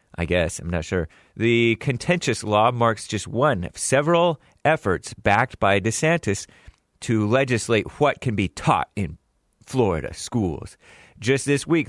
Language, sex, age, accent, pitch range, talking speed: English, male, 30-49, American, 105-145 Hz, 145 wpm